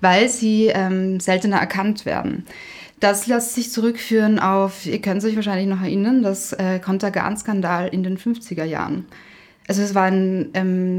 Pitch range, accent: 190-220 Hz, German